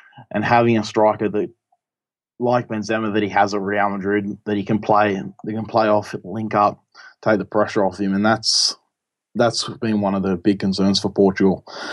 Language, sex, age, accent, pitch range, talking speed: English, male, 20-39, Australian, 105-120 Hz, 195 wpm